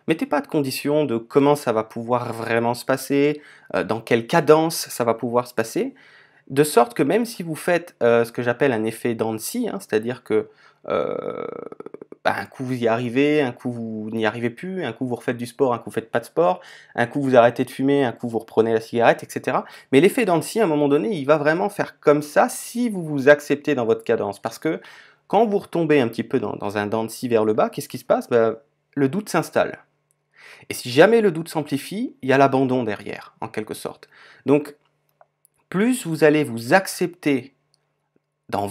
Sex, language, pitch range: male, French, 120-165 Hz